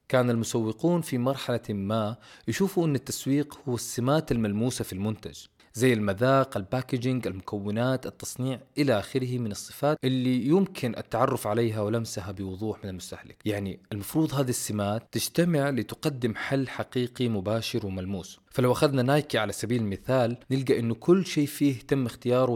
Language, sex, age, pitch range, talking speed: Arabic, male, 20-39, 105-140 Hz, 140 wpm